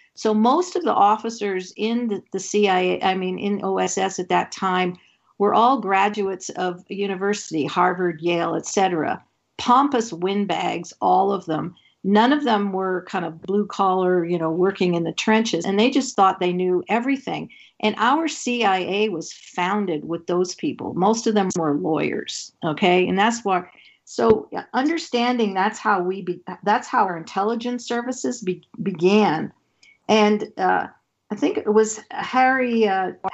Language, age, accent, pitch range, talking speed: English, 50-69, American, 185-230 Hz, 160 wpm